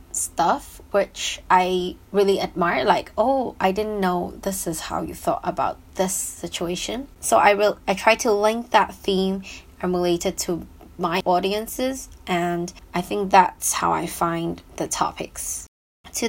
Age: 20-39